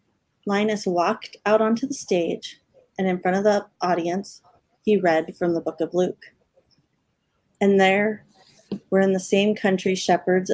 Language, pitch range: English, 175-200 Hz